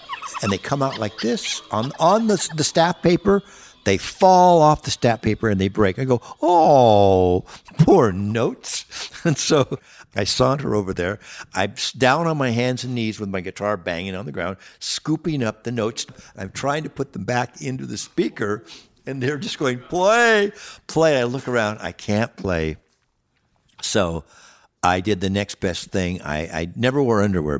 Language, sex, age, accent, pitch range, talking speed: English, male, 60-79, American, 85-125 Hz, 180 wpm